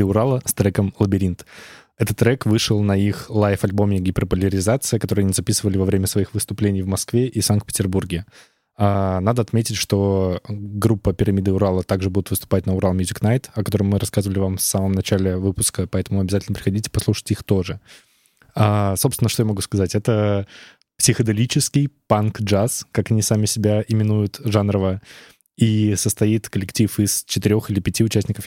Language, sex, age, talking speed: Russian, male, 20-39, 150 wpm